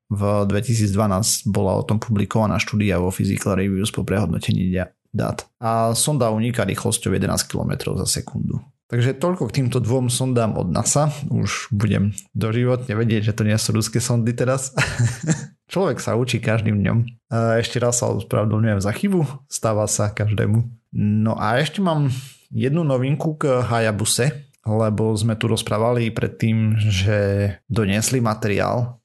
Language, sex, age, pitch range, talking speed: Slovak, male, 30-49, 105-125 Hz, 145 wpm